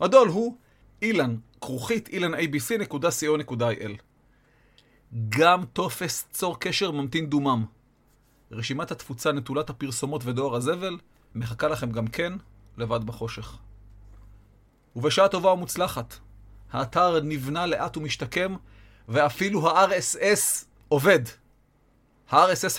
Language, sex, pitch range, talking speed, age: Hebrew, male, 110-175 Hz, 90 wpm, 40-59